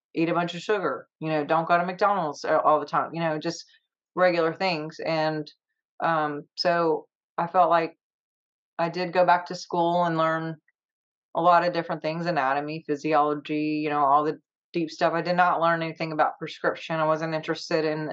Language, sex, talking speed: English, female, 190 wpm